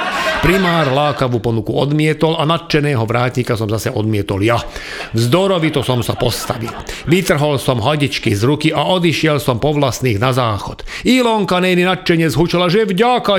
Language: Slovak